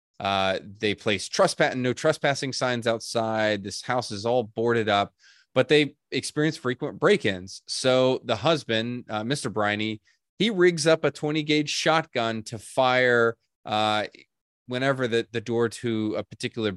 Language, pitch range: English, 105-135 Hz